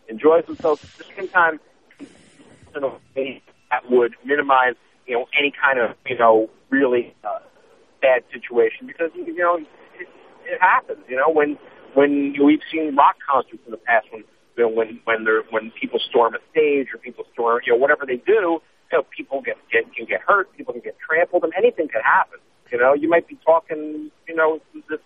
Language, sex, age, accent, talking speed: English, male, 40-59, American, 205 wpm